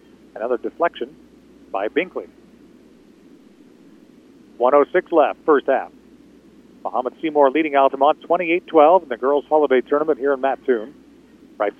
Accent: American